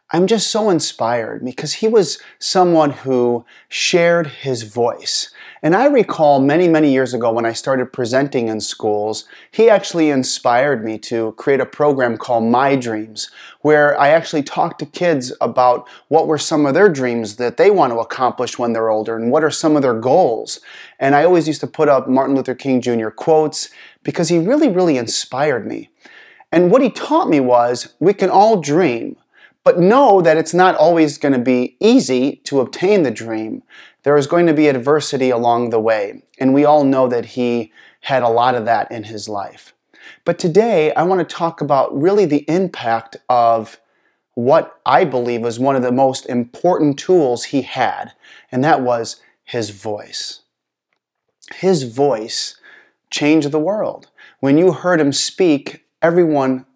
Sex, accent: male, American